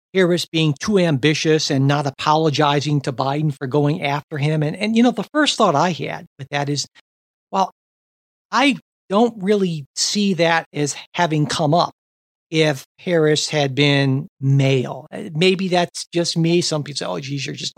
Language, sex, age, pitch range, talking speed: English, male, 50-69, 145-180 Hz, 170 wpm